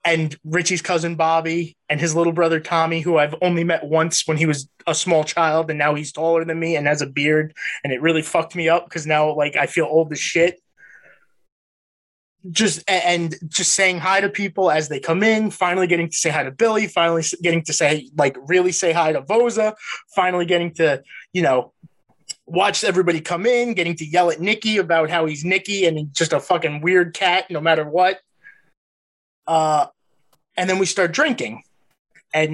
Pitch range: 160-200 Hz